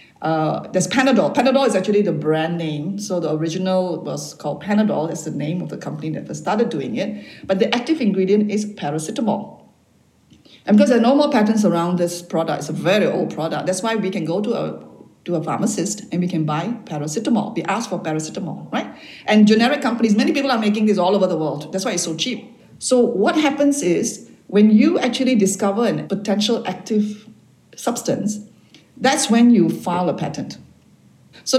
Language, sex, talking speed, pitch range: English, female, 195 wpm, 175-230 Hz